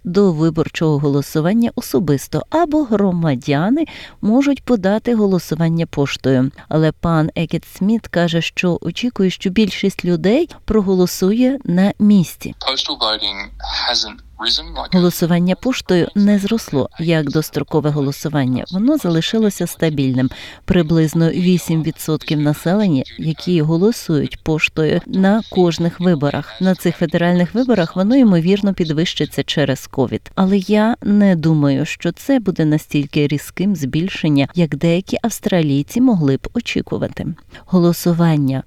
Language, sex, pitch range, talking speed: Ukrainian, female, 155-210 Hz, 105 wpm